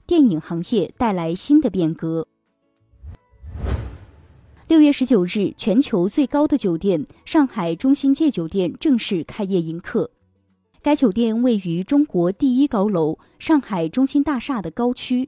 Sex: female